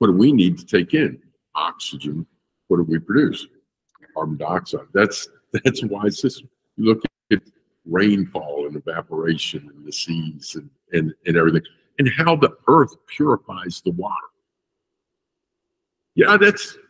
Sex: male